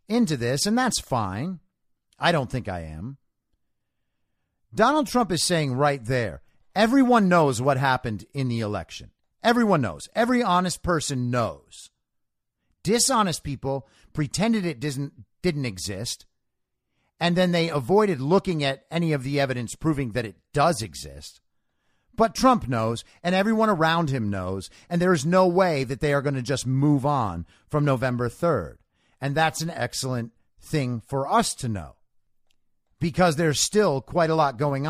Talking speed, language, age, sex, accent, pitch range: 155 wpm, English, 50-69, male, American, 120-175 Hz